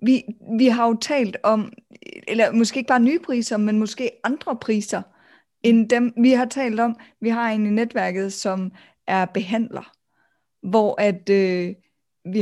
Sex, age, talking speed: female, 20-39, 155 wpm